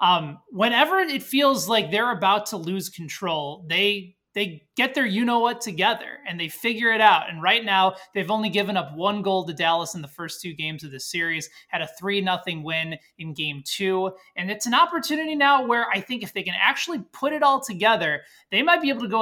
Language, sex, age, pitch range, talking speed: English, male, 20-39, 165-215 Hz, 225 wpm